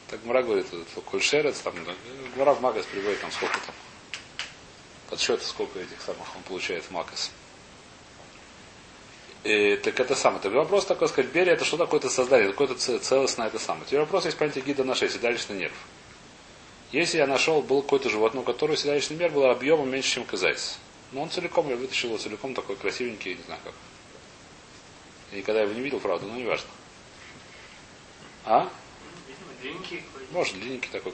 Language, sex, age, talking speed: Russian, male, 30-49, 165 wpm